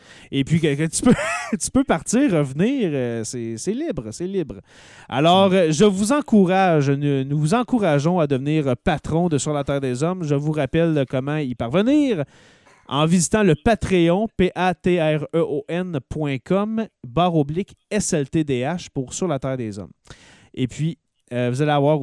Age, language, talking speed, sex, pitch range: 30-49, French, 150 wpm, male, 140-190 Hz